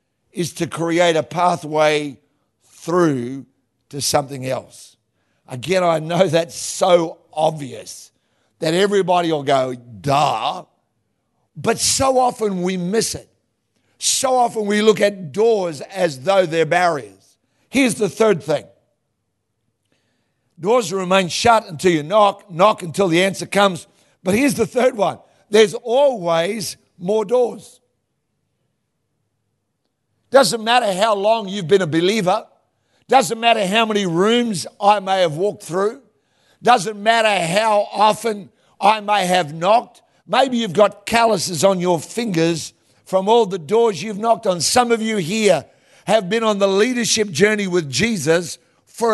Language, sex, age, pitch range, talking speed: English, male, 60-79, 160-220 Hz, 140 wpm